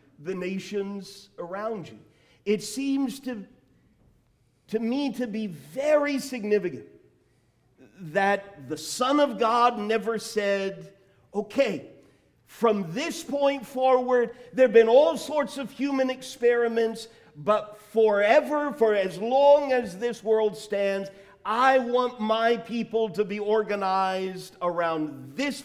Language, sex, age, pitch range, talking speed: English, male, 50-69, 200-270 Hz, 115 wpm